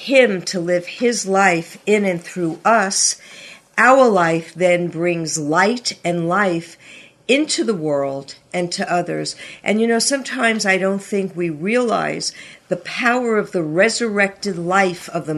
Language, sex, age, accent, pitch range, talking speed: English, female, 50-69, American, 175-225 Hz, 150 wpm